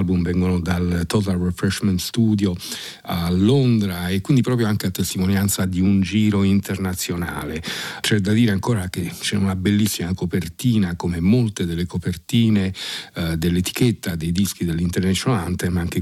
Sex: male